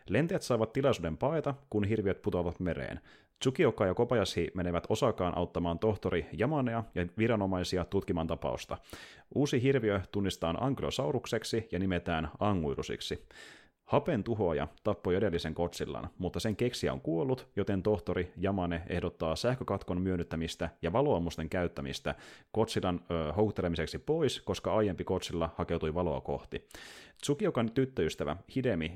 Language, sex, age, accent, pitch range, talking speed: Finnish, male, 30-49, native, 85-110 Hz, 120 wpm